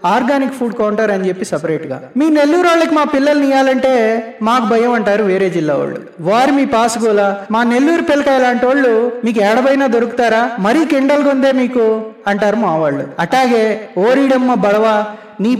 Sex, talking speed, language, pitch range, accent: male, 160 wpm, Telugu, 210-270 Hz, native